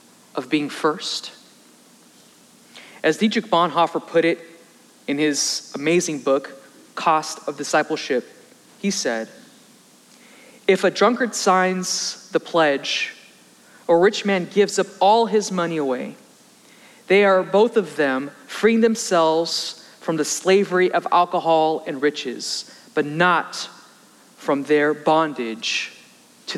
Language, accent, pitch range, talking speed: English, American, 160-220 Hz, 120 wpm